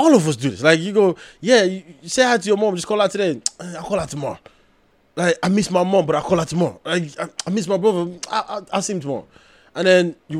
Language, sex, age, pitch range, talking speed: English, male, 20-39, 155-220 Hz, 265 wpm